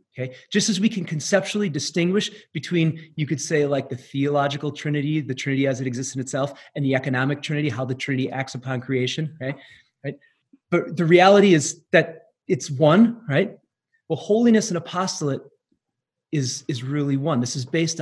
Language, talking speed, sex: English, 175 wpm, male